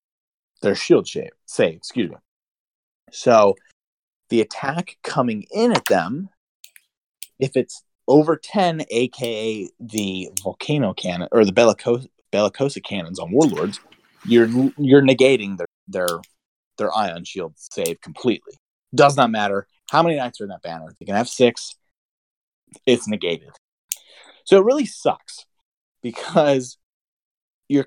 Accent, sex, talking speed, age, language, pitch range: American, male, 125 wpm, 30-49, English, 110-155 Hz